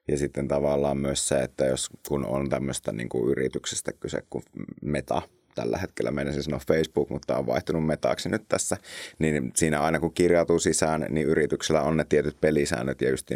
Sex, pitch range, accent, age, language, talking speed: male, 70-80 Hz, native, 30-49, Finnish, 185 wpm